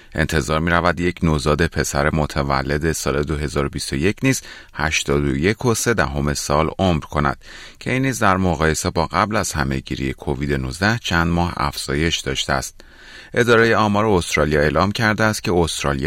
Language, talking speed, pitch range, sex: Persian, 130 wpm, 75-100 Hz, male